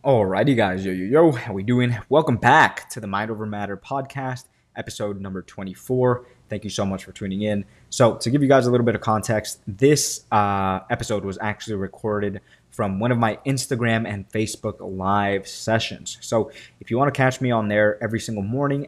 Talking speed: 200 wpm